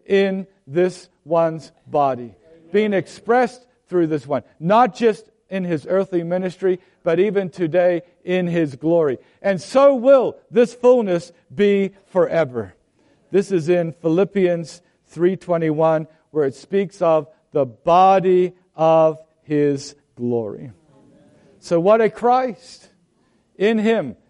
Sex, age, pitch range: male, 50-69, 155-200 Hz